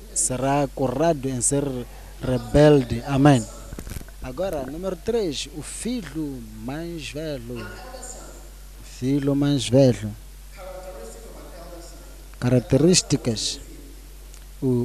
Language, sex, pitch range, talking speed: Portuguese, male, 125-170 Hz, 75 wpm